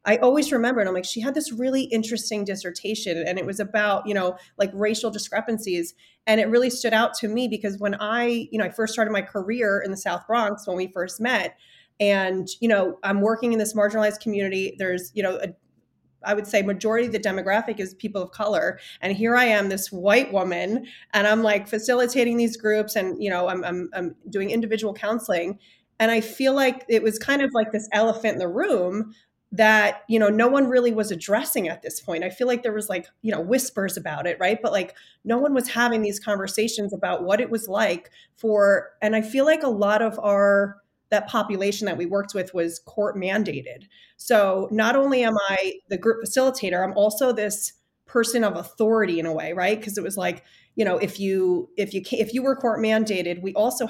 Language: English